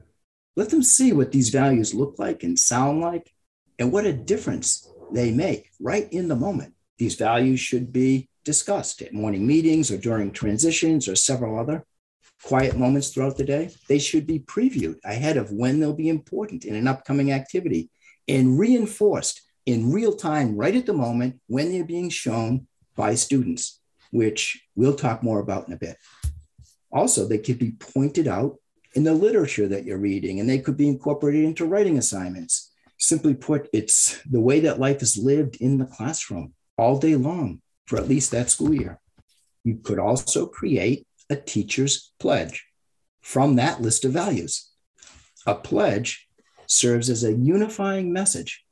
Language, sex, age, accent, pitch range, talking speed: English, male, 50-69, American, 120-155 Hz, 170 wpm